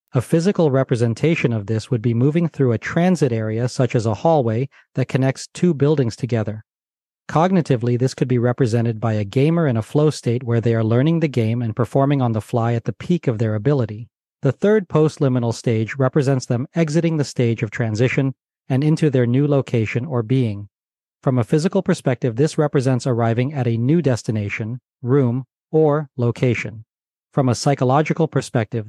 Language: English